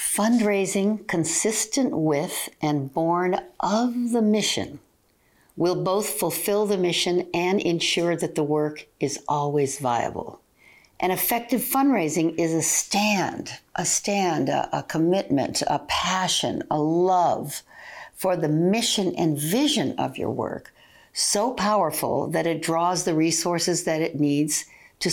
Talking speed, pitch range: 130 wpm, 155-200 Hz